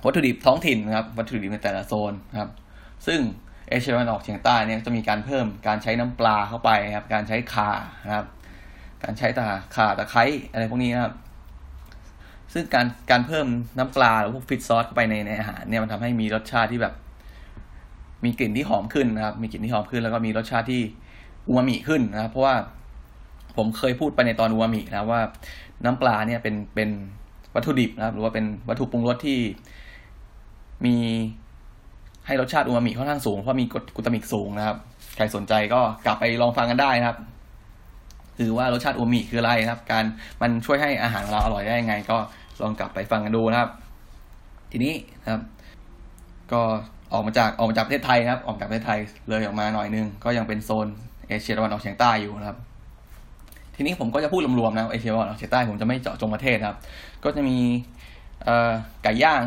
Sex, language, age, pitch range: male, Thai, 20-39, 105-120 Hz